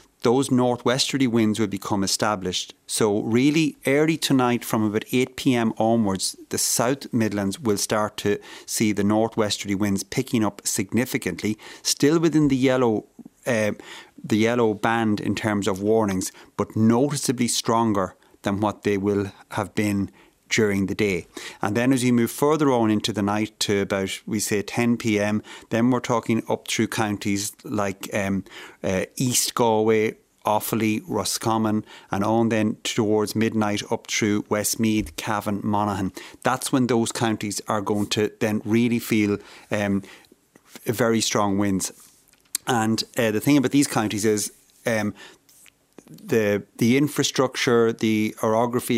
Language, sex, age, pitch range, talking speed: English, male, 30-49, 105-120 Hz, 145 wpm